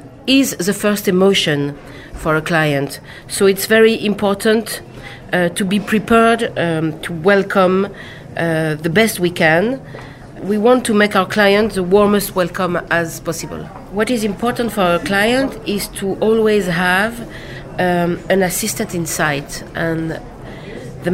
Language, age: Korean, 40-59